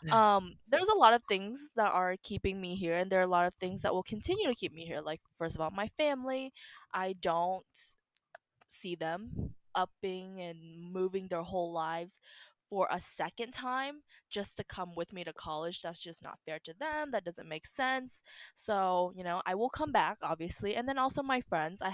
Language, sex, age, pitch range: English, female, 20-39, 170-230 Hz